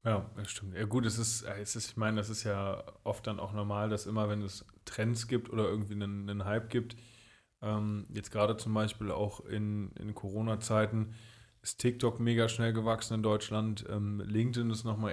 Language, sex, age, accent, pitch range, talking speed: German, male, 20-39, German, 105-115 Hz, 200 wpm